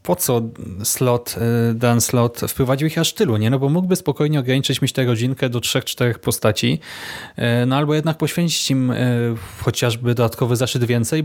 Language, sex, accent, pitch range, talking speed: Polish, male, native, 120-150 Hz, 165 wpm